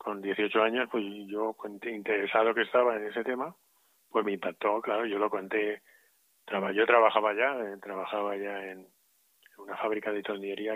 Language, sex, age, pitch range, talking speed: Spanish, male, 30-49, 100-120 Hz, 155 wpm